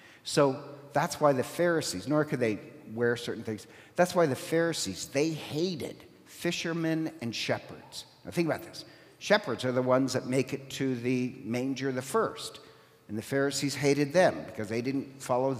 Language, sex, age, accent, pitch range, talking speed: English, male, 50-69, American, 125-160 Hz, 175 wpm